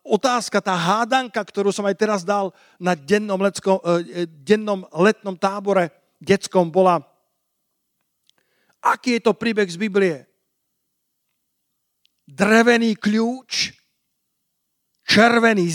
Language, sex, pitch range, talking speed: Slovak, male, 190-230 Hz, 95 wpm